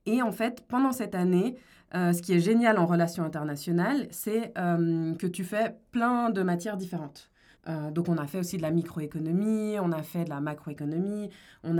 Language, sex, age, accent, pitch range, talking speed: French, female, 20-39, French, 165-205 Hz, 200 wpm